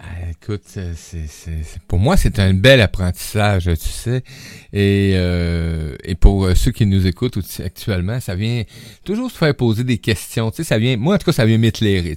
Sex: male